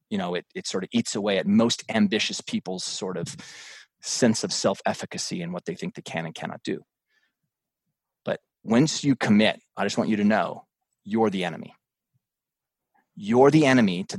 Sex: male